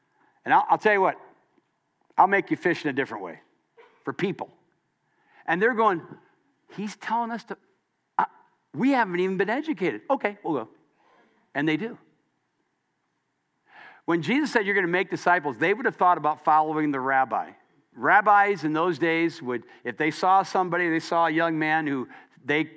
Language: English